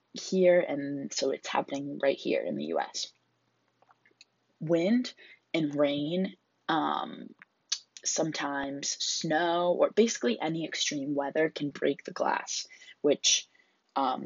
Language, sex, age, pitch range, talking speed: English, female, 20-39, 145-185 Hz, 115 wpm